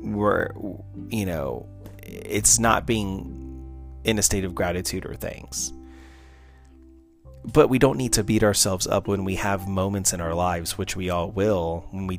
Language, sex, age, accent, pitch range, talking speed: English, male, 30-49, American, 90-110 Hz, 165 wpm